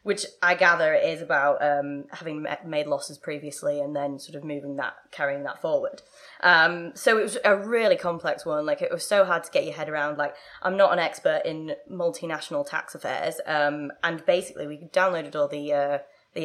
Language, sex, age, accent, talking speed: English, female, 20-39, British, 195 wpm